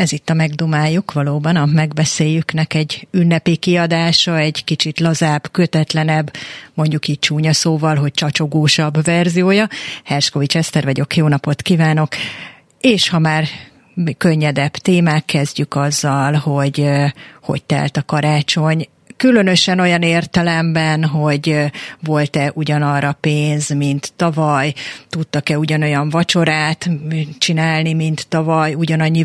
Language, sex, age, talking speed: Hungarian, female, 30-49, 115 wpm